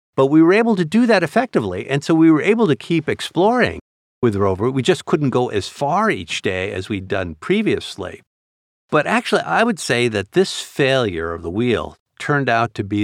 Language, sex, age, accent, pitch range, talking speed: English, male, 50-69, American, 100-155 Hz, 210 wpm